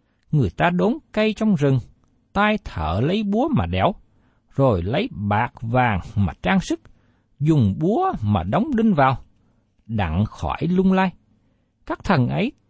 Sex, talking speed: male, 150 wpm